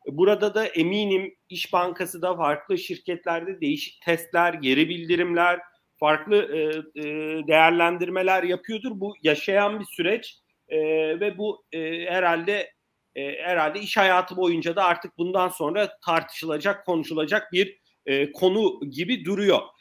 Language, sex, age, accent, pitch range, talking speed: Turkish, male, 40-59, native, 170-215 Hz, 110 wpm